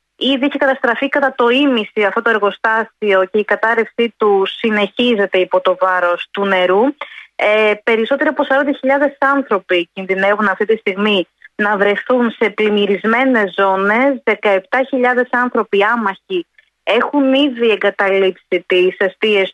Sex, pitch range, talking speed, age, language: female, 200-275 Hz, 125 wpm, 20-39, Greek